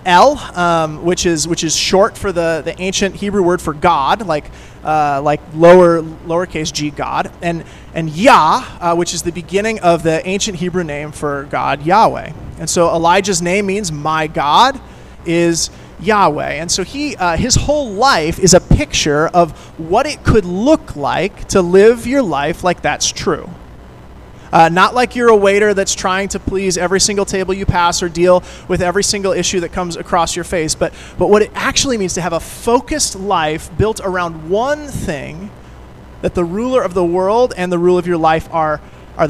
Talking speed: 190 wpm